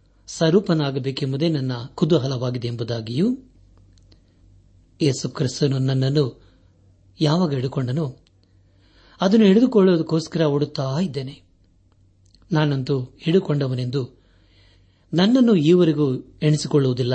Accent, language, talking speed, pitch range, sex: native, Kannada, 65 wpm, 95-155 Hz, male